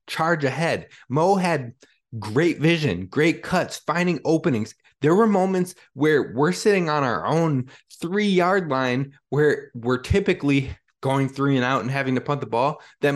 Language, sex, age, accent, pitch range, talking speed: English, male, 20-39, American, 120-155 Hz, 160 wpm